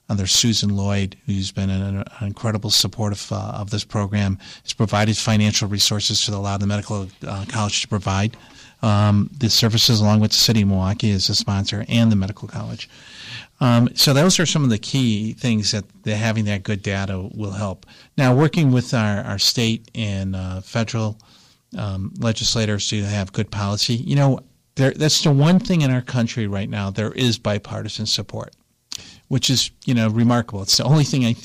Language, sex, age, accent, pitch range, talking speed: English, male, 50-69, American, 105-120 Hz, 190 wpm